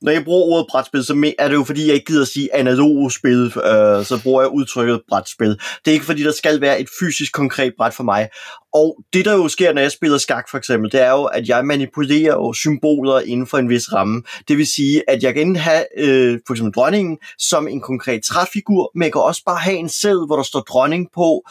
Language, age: Danish, 20-39